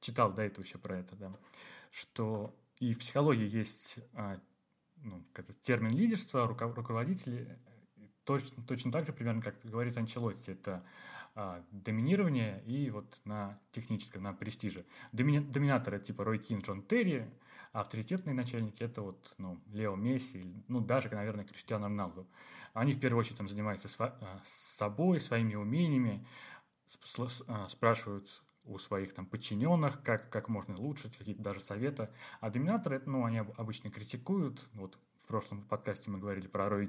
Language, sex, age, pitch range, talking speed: Russian, male, 20-39, 100-125 Hz, 145 wpm